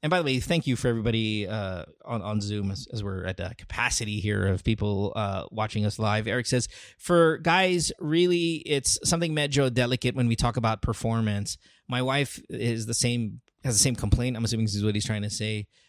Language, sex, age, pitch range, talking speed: English, male, 20-39, 110-160 Hz, 220 wpm